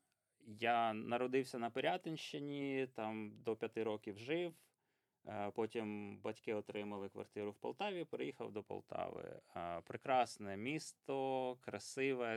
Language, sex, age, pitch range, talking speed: Ukrainian, male, 20-39, 105-130 Hz, 100 wpm